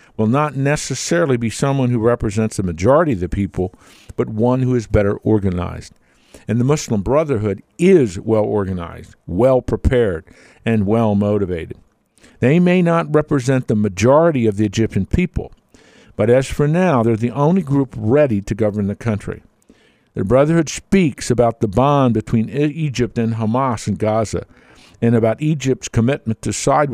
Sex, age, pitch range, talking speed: male, 50-69, 110-145 Hz, 150 wpm